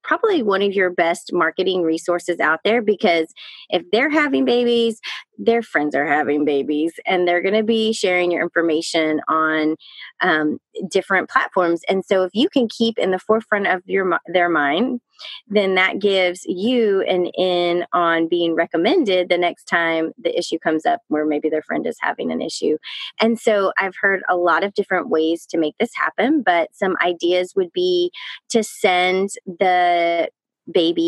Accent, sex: American, female